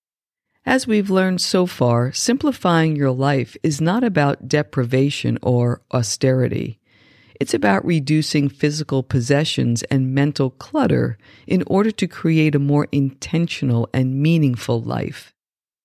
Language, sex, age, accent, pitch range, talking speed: English, female, 50-69, American, 130-165 Hz, 120 wpm